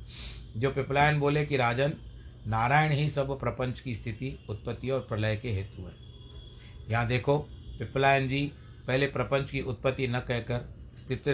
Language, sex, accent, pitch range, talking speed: Hindi, male, native, 110-135 Hz, 150 wpm